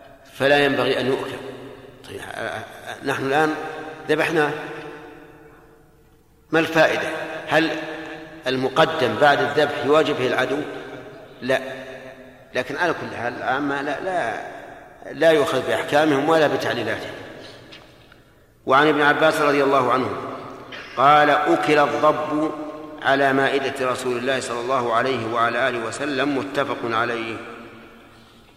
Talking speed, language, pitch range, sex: 105 wpm, Arabic, 125-150 Hz, male